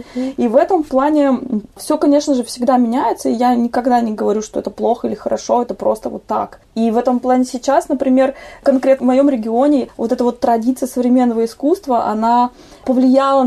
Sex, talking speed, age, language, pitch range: female, 185 wpm, 20-39, Russian, 215-270 Hz